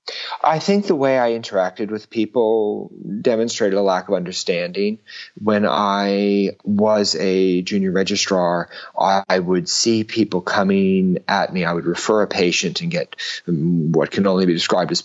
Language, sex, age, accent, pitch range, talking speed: English, male, 40-59, American, 90-130 Hz, 155 wpm